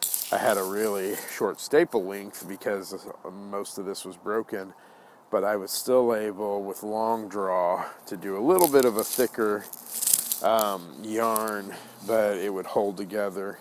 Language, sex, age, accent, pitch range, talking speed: English, male, 40-59, American, 95-105 Hz, 160 wpm